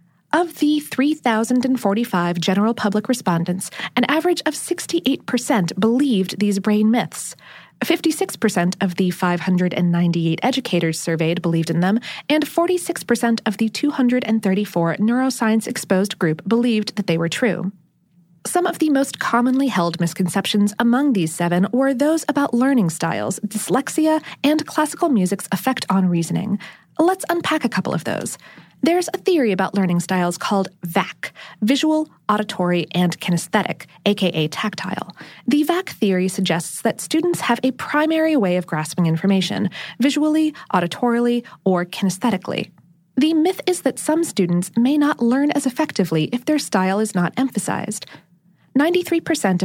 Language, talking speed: English, 135 wpm